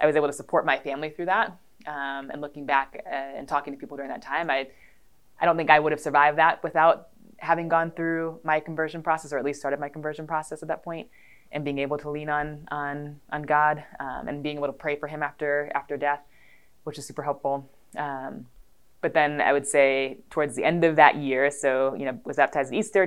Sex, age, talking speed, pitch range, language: female, 20-39, 235 wpm, 140-160 Hz, English